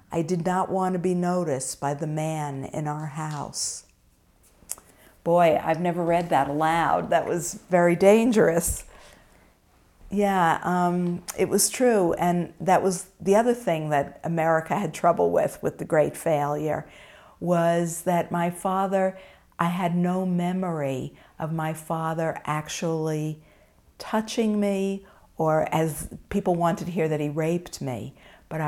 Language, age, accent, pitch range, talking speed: English, 50-69, American, 155-180 Hz, 140 wpm